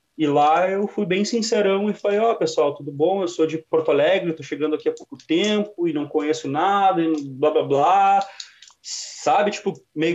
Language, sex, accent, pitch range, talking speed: Portuguese, male, Brazilian, 145-185 Hz, 195 wpm